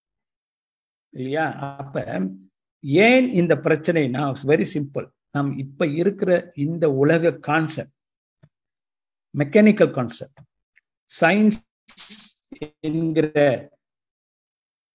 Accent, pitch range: native, 140-205 Hz